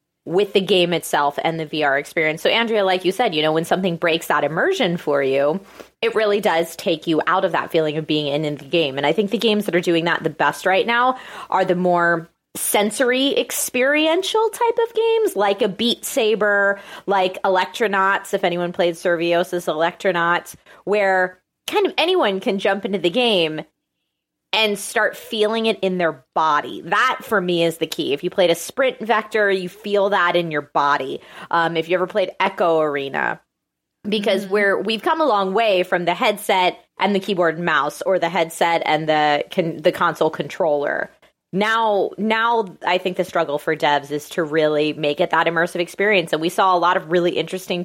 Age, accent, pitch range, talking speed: 20-39, American, 165-205 Hz, 200 wpm